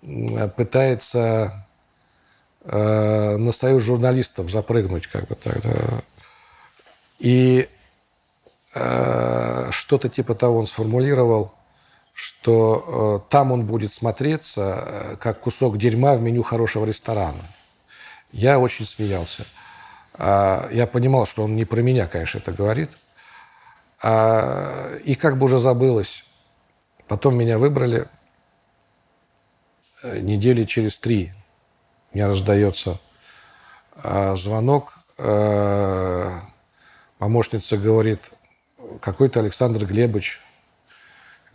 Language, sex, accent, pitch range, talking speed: Russian, male, native, 100-120 Hz, 95 wpm